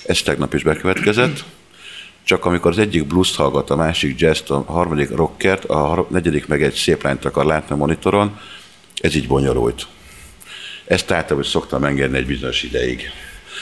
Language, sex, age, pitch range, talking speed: Hungarian, male, 60-79, 70-90 Hz, 165 wpm